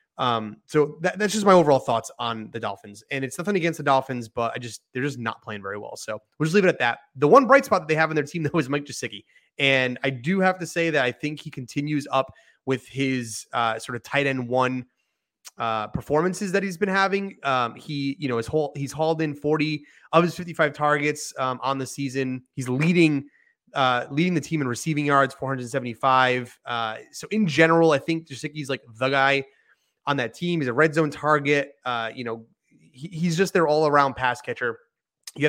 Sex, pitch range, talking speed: male, 130-165 Hz, 225 wpm